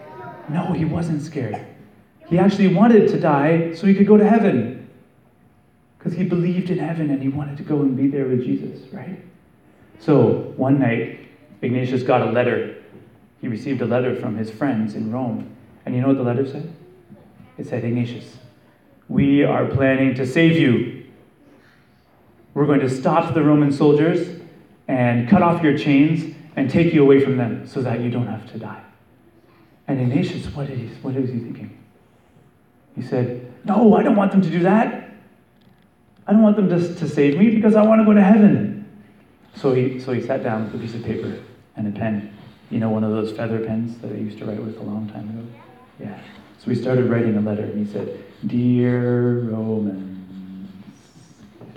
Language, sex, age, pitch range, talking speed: English, male, 30-49, 115-165 Hz, 190 wpm